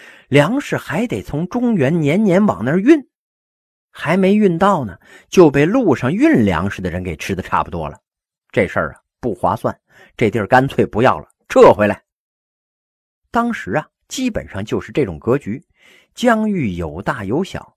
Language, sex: Chinese, male